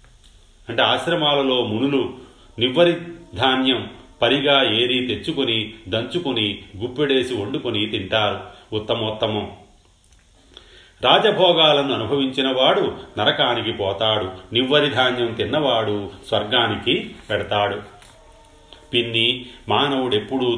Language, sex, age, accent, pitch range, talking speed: Telugu, male, 40-59, native, 100-130 Hz, 70 wpm